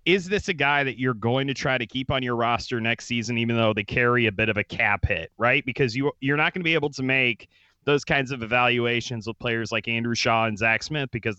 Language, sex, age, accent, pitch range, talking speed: English, male, 30-49, American, 110-135 Hz, 265 wpm